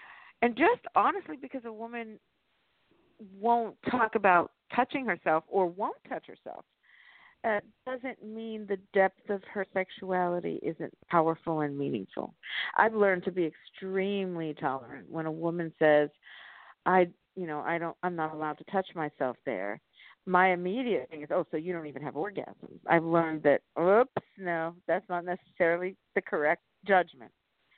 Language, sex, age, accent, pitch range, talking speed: English, female, 50-69, American, 180-235 Hz, 155 wpm